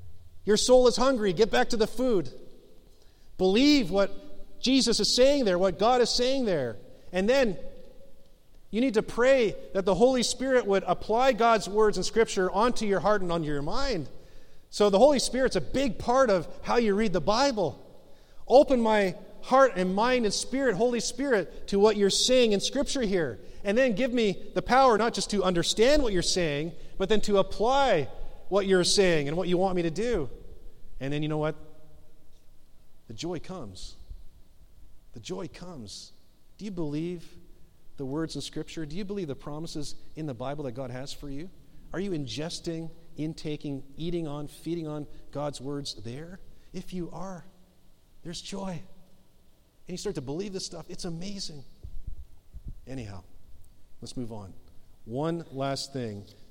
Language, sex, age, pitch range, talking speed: English, male, 40-59, 145-215 Hz, 170 wpm